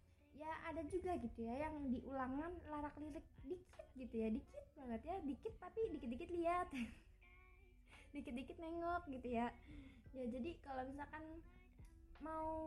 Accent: native